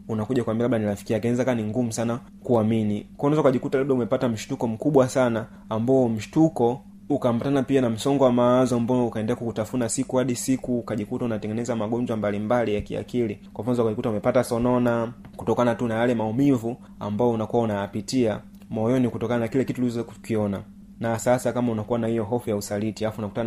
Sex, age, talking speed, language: male, 30-49, 175 wpm, Swahili